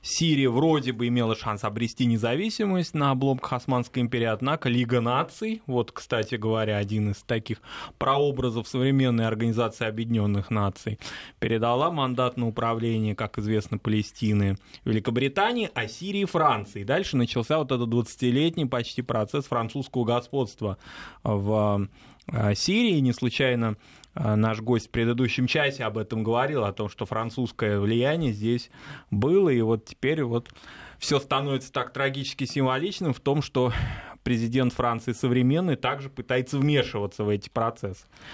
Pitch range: 110-135 Hz